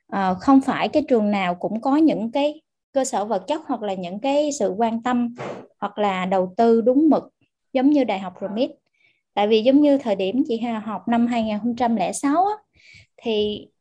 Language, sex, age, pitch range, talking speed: Vietnamese, female, 20-39, 205-270 Hz, 185 wpm